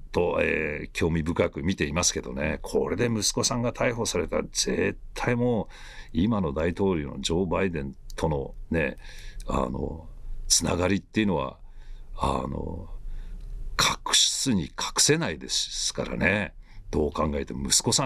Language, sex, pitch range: Japanese, male, 80-105 Hz